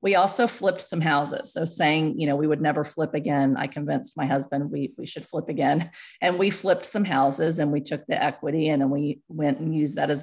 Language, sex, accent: English, female, American